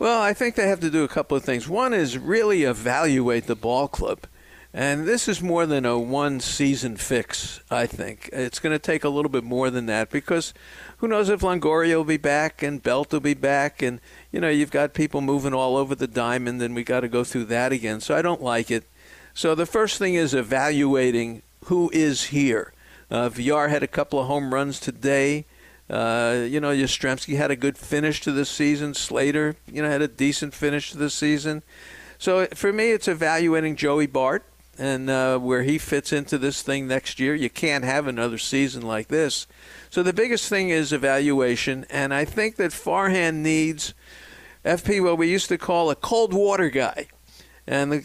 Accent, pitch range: American, 130-170 Hz